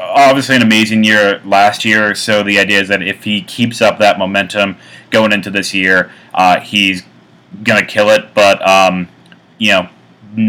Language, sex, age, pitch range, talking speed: English, male, 30-49, 100-115 Hz, 175 wpm